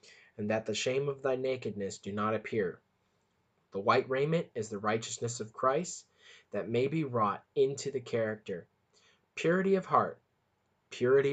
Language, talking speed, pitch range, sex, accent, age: English, 155 wpm, 100-120 Hz, male, American, 20-39